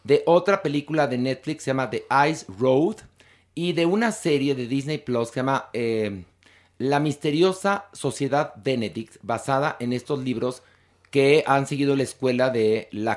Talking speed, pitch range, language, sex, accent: 165 wpm, 115-150 Hz, Spanish, male, Mexican